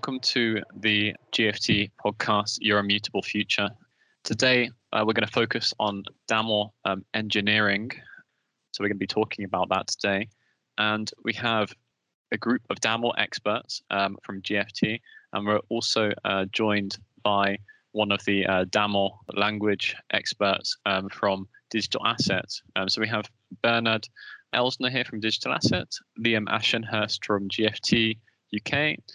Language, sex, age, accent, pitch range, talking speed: English, male, 20-39, British, 100-115 Hz, 145 wpm